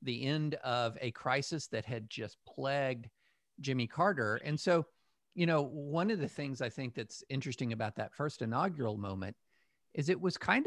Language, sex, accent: English, male, American